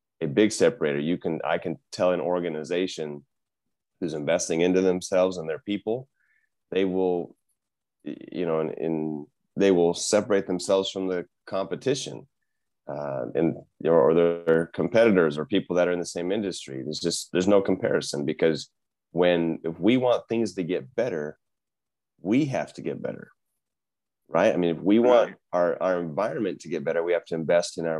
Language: English